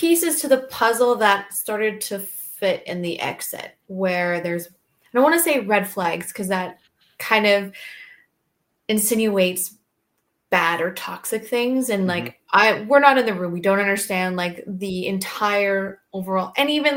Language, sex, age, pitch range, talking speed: English, female, 20-39, 185-220 Hz, 165 wpm